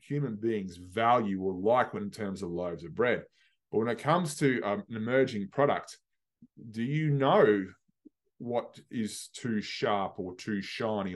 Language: English